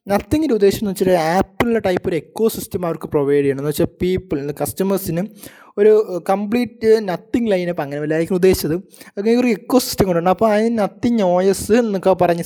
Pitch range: 165-220 Hz